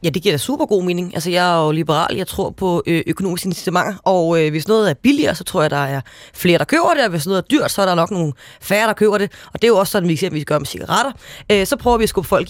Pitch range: 180-235 Hz